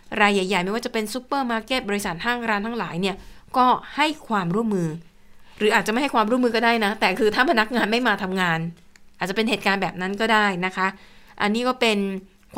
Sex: female